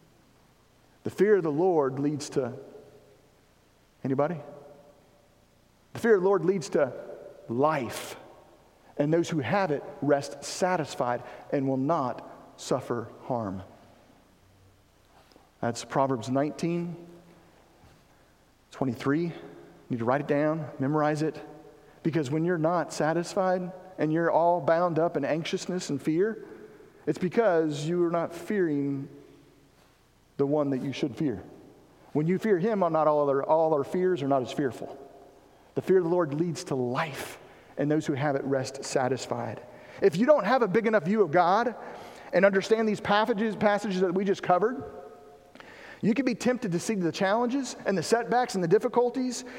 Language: English